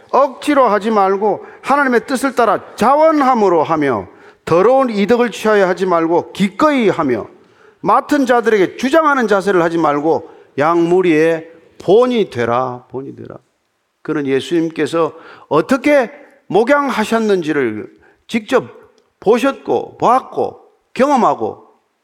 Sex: male